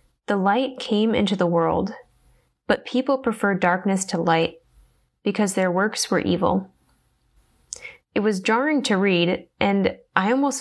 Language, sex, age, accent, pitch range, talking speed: English, female, 10-29, American, 180-235 Hz, 140 wpm